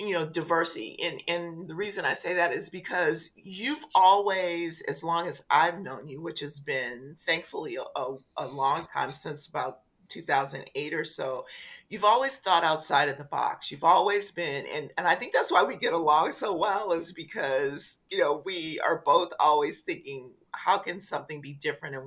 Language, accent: English, American